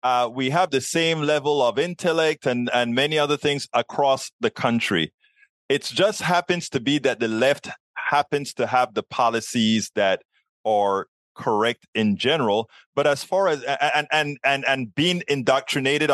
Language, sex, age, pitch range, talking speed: English, male, 30-49, 115-150 Hz, 165 wpm